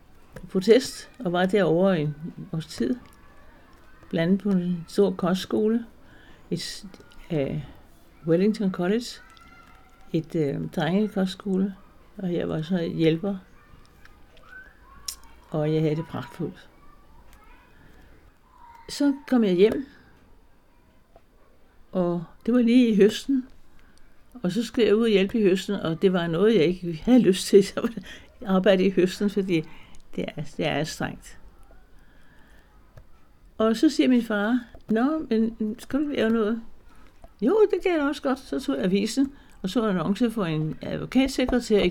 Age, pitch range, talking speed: 60-79, 175-230 Hz, 140 wpm